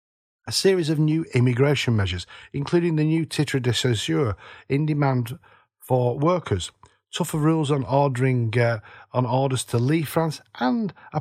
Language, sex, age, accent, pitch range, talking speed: English, male, 40-59, British, 115-155 Hz, 150 wpm